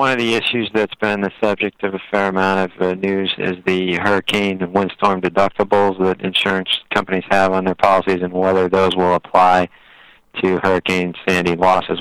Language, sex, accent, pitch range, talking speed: English, male, American, 85-95 Hz, 185 wpm